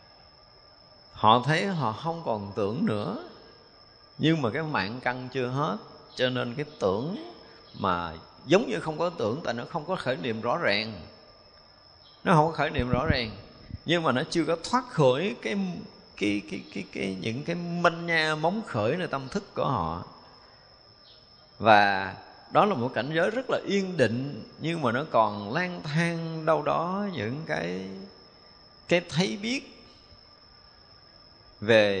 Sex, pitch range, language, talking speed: male, 110-160 Hz, Vietnamese, 160 wpm